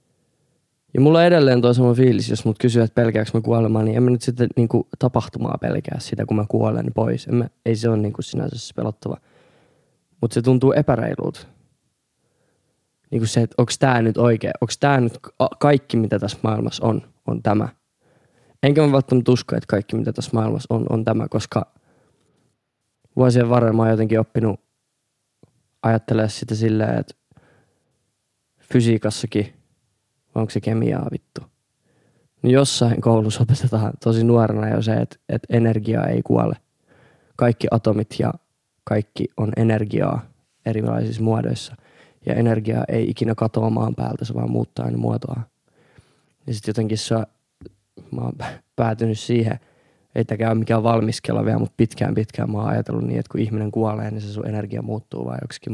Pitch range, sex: 110-125 Hz, male